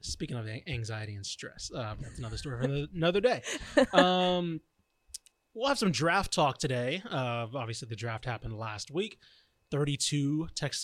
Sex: male